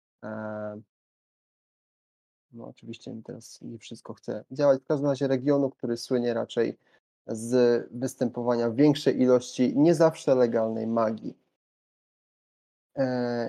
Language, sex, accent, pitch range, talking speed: Polish, male, native, 115-135 Hz, 100 wpm